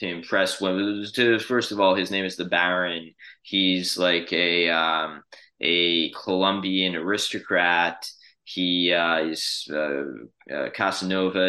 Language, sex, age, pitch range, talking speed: English, male, 20-39, 90-100 Hz, 120 wpm